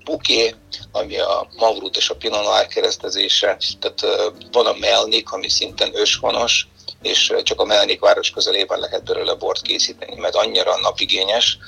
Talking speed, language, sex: 150 wpm, Hungarian, male